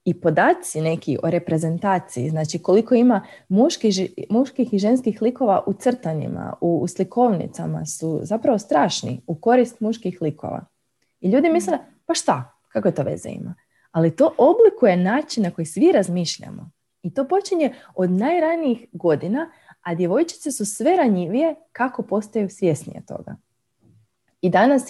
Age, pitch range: 20-39, 160-230 Hz